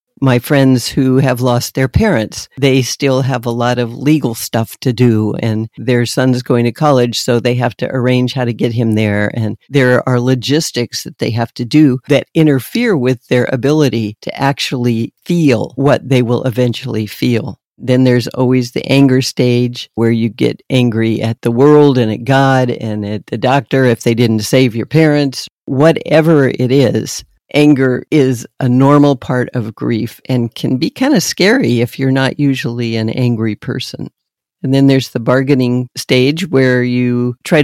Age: 50-69